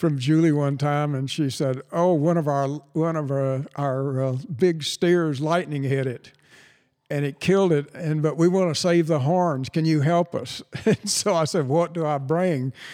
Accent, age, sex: American, 60-79, male